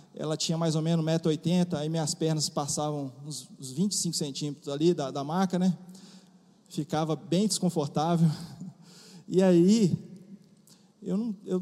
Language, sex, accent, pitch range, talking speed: Portuguese, male, Brazilian, 160-200 Hz, 135 wpm